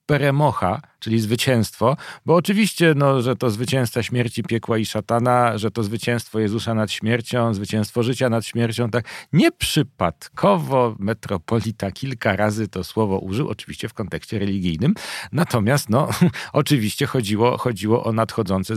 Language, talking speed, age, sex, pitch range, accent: Polish, 130 wpm, 40-59, male, 100-125 Hz, native